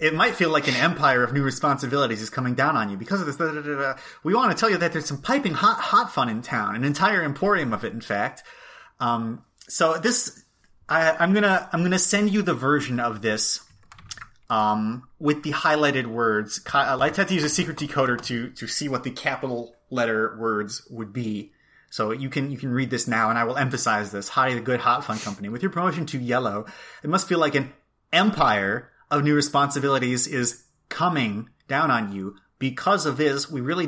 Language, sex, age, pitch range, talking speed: English, male, 30-49, 115-150 Hz, 210 wpm